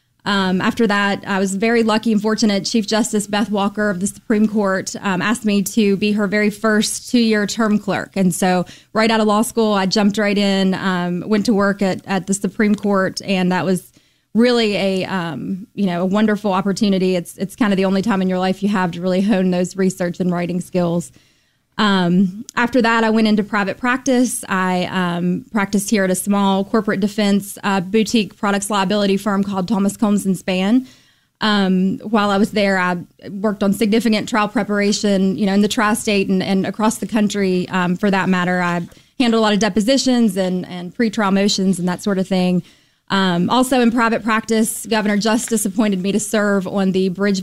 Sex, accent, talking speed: female, American, 205 wpm